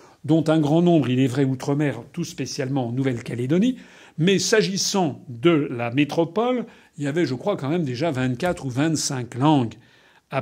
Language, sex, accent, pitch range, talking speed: French, male, French, 135-170 Hz, 175 wpm